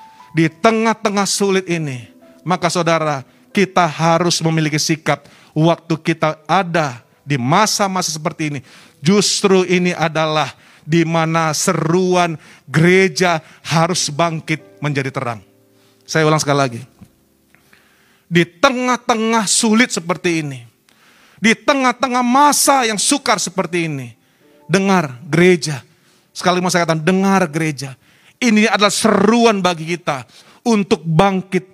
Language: Indonesian